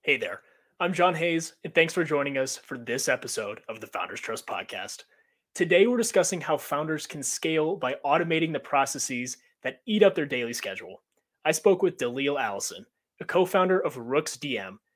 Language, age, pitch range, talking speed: English, 30-49, 135-175 Hz, 180 wpm